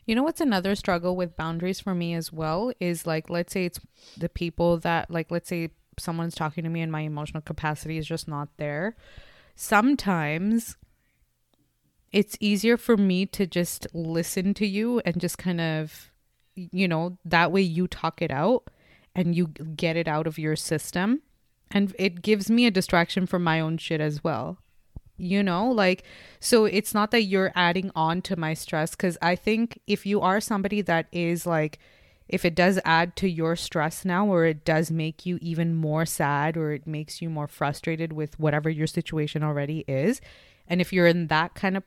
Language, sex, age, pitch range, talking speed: English, female, 20-39, 155-190 Hz, 190 wpm